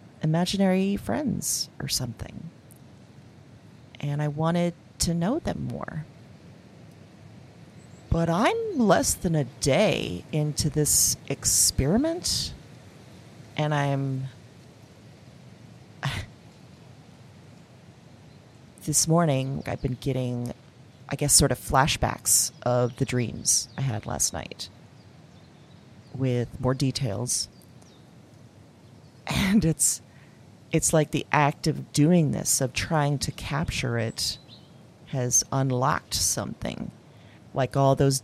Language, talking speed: English, 95 wpm